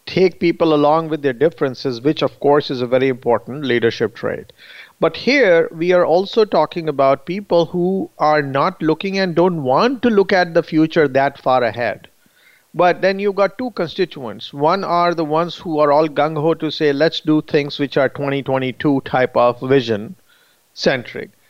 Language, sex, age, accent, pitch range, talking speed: English, male, 50-69, Indian, 145-180 Hz, 180 wpm